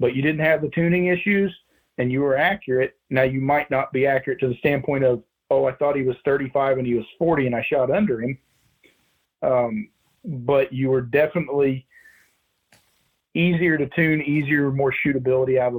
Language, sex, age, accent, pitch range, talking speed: English, male, 40-59, American, 125-145 Hz, 185 wpm